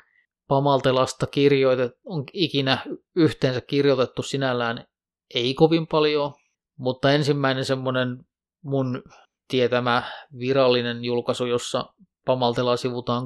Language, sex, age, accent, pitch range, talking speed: Finnish, male, 30-49, native, 120-140 Hz, 90 wpm